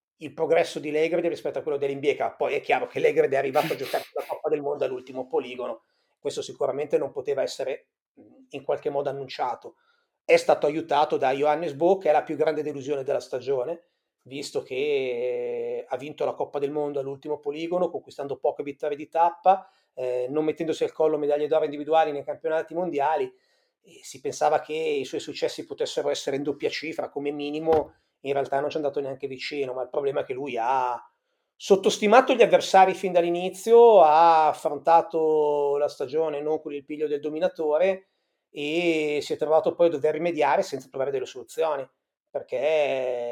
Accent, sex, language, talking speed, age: native, male, Italian, 180 wpm, 30-49